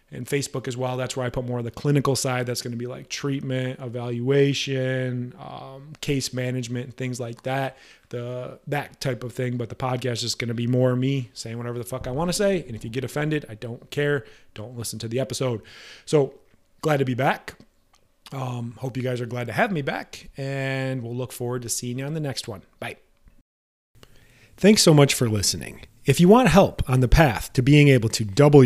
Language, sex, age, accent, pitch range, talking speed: English, male, 30-49, American, 120-140 Hz, 220 wpm